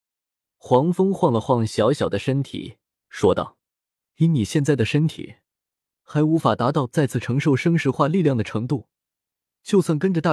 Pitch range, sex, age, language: 115-165 Hz, male, 20-39, Chinese